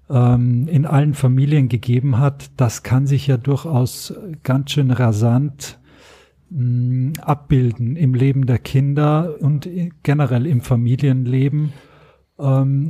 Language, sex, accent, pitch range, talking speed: German, male, German, 130-150 Hz, 105 wpm